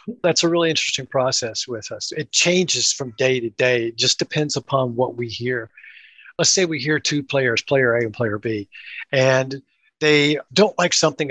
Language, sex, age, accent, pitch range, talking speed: English, male, 50-69, American, 125-155 Hz, 190 wpm